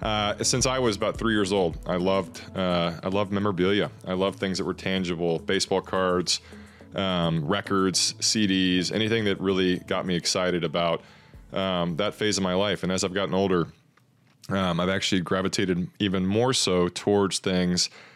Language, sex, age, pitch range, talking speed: English, male, 30-49, 90-105 Hz, 170 wpm